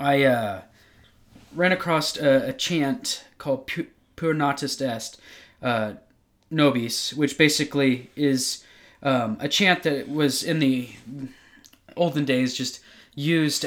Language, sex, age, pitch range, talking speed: English, male, 20-39, 125-150 Hz, 120 wpm